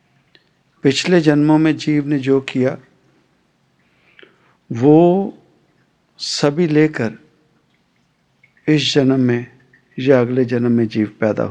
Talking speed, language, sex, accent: 100 wpm, English, male, Indian